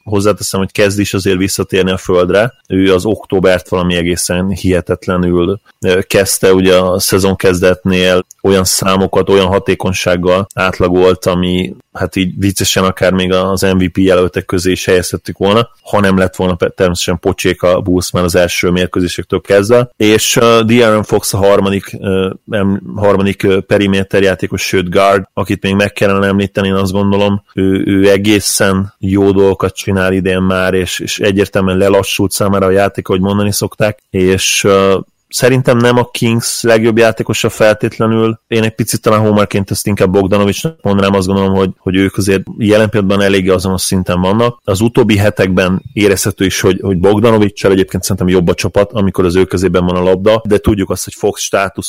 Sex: male